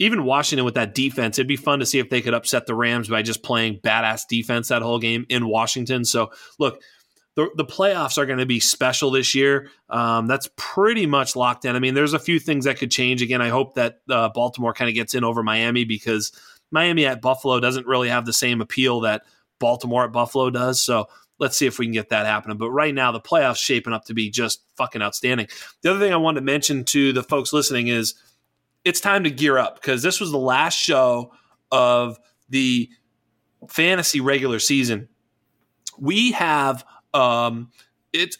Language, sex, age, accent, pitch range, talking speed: English, male, 30-49, American, 120-145 Hz, 210 wpm